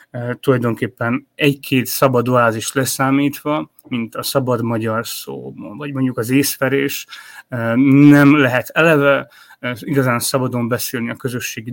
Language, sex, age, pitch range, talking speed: Hungarian, male, 30-49, 120-140 Hz, 115 wpm